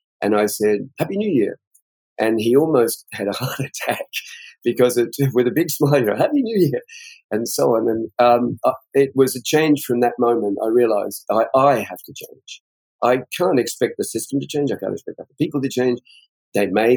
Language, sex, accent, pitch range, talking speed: English, male, British, 105-135 Hz, 210 wpm